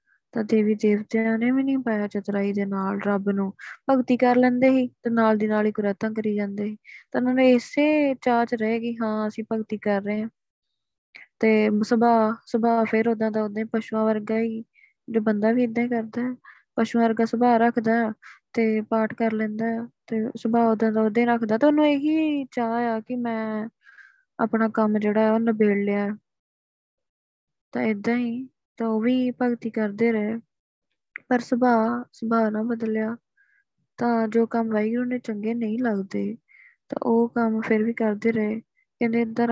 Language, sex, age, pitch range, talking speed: Punjabi, female, 20-39, 220-240 Hz, 165 wpm